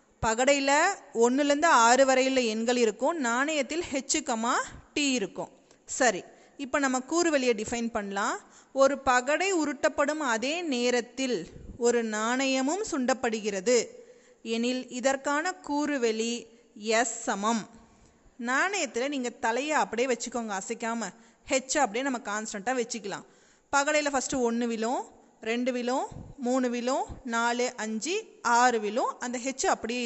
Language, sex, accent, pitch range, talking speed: Tamil, female, native, 235-295 Hz, 110 wpm